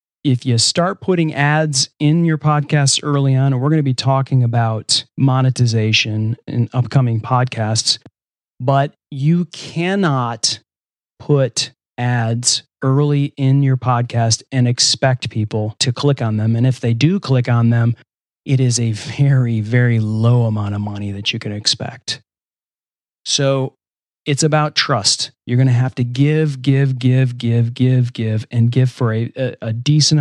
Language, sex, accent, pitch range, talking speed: English, male, American, 115-150 Hz, 155 wpm